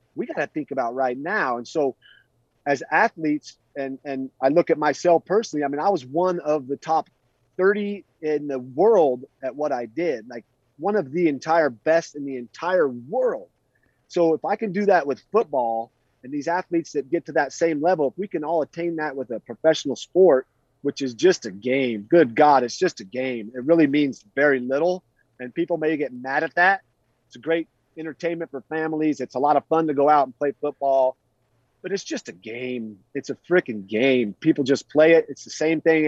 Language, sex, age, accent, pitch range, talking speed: English, male, 30-49, American, 130-165 Hz, 215 wpm